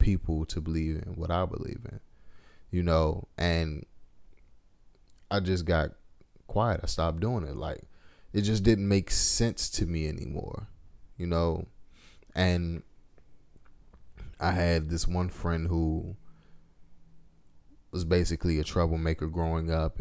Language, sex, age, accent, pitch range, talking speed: English, male, 20-39, American, 85-110 Hz, 130 wpm